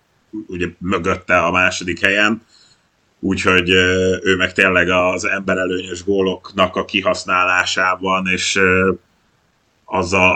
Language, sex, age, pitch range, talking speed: Hungarian, male, 30-49, 95-115 Hz, 85 wpm